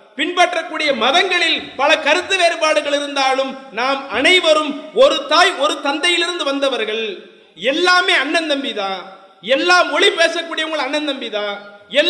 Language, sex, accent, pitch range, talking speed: English, male, Indian, 270-340 Hz, 90 wpm